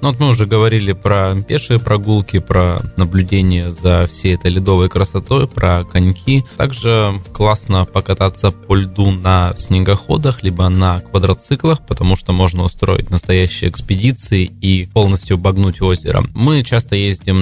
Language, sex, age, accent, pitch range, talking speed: Russian, male, 20-39, native, 95-115 Hz, 140 wpm